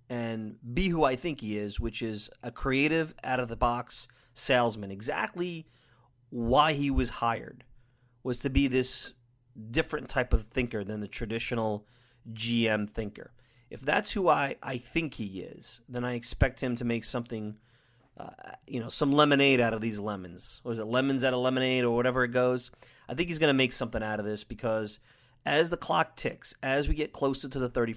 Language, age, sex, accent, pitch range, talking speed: English, 30-49, male, American, 110-125 Hz, 185 wpm